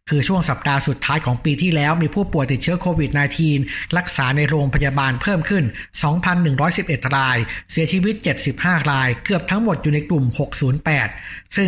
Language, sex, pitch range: Thai, male, 135-170 Hz